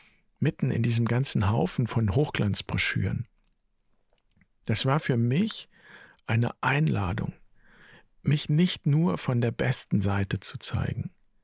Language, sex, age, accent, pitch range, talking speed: German, male, 50-69, German, 110-135 Hz, 115 wpm